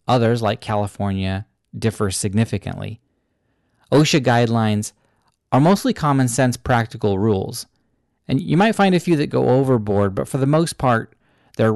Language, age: English, 40-59